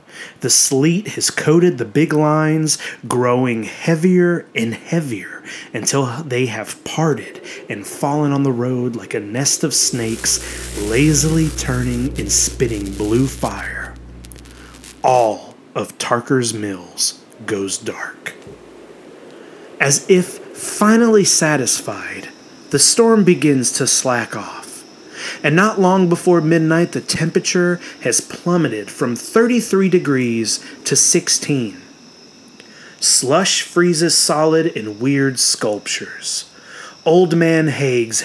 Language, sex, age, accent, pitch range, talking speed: English, male, 30-49, American, 120-175 Hz, 110 wpm